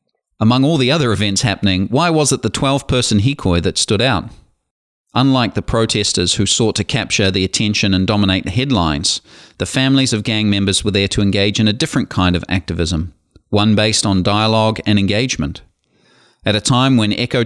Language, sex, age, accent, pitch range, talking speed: English, male, 40-59, Australian, 100-125 Hz, 185 wpm